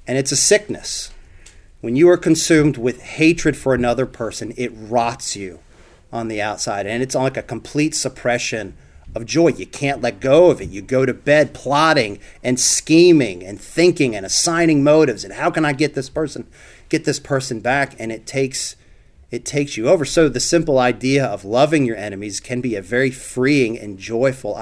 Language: English